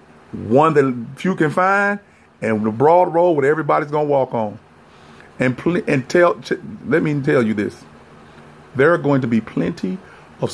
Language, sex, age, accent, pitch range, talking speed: English, male, 40-59, American, 105-150 Hz, 170 wpm